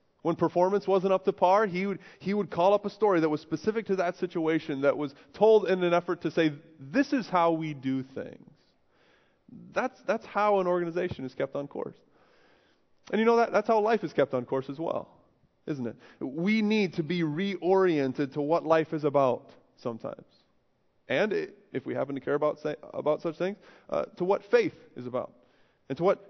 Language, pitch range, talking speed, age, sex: English, 160-195 Hz, 205 wpm, 20-39, male